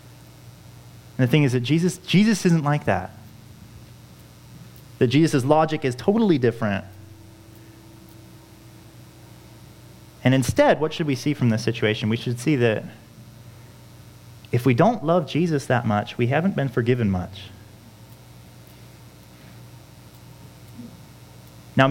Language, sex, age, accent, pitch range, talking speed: English, male, 30-49, American, 110-140 Hz, 115 wpm